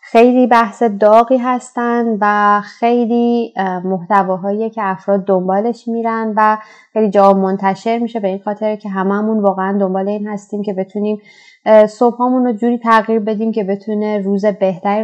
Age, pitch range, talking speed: 30-49, 200-230 Hz, 145 wpm